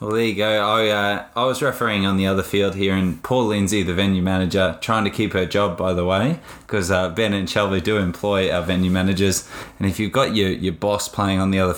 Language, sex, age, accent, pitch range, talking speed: English, male, 20-39, Australian, 95-110 Hz, 240 wpm